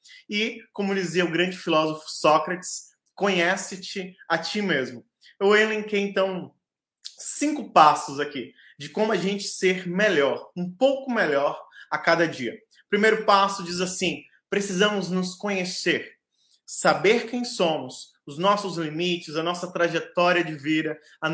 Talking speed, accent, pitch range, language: 135 wpm, Brazilian, 170-210 Hz, Portuguese